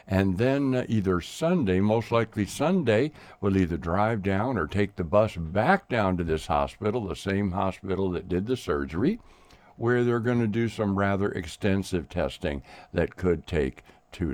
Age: 60-79